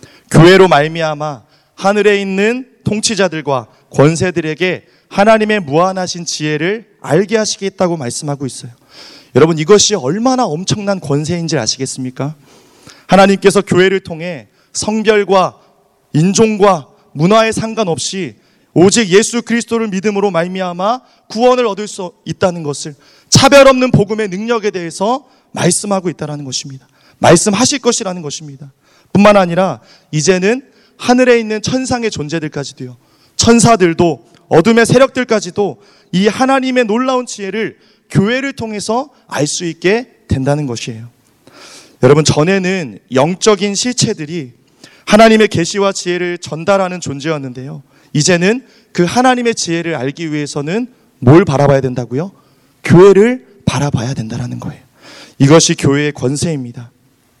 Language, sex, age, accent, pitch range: Korean, male, 30-49, native, 145-215 Hz